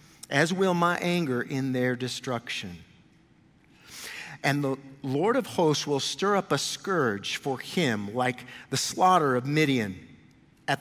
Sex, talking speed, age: male, 140 wpm, 50-69